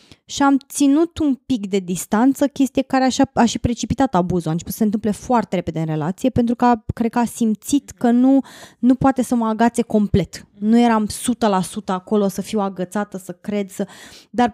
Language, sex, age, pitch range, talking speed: Romanian, female, 20-39, 210-265 Hz, 200 wpm